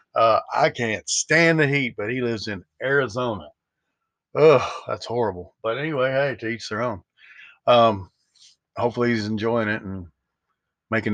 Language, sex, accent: English, male, American